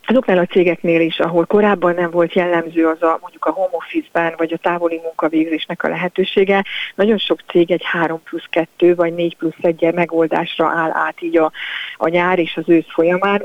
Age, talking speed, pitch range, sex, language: 30-49, 185 wpm, 165-185 Hz, female, Hungarian